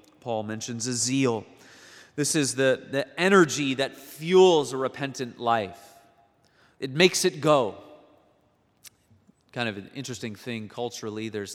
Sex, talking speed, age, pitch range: male, 130 wpm, 30-49, 110-150 Hz